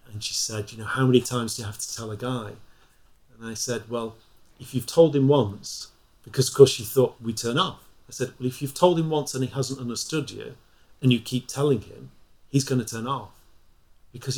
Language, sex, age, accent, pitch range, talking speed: English, male, 40-59, British, 110-135 Hz, 235 wpm